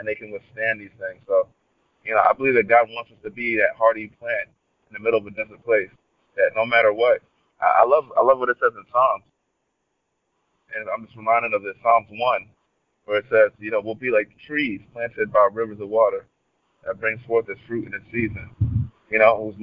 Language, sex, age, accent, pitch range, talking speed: English, male, 30-49, American, 105-135 Hz, 225 wpm